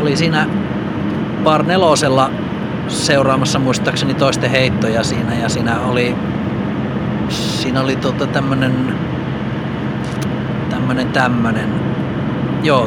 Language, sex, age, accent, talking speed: Finnish, male, 30-49, native, 90 wpm